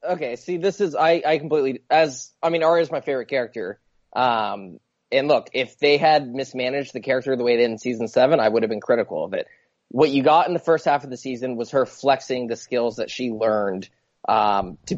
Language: English